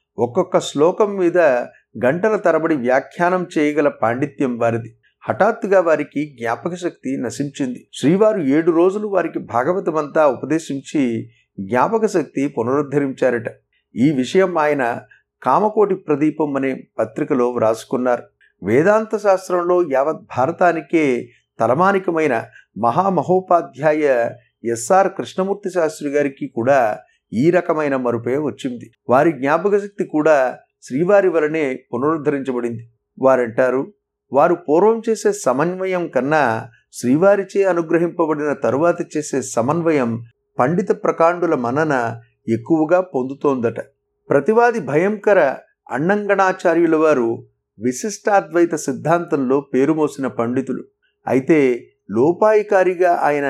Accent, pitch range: native, 130-185 Hz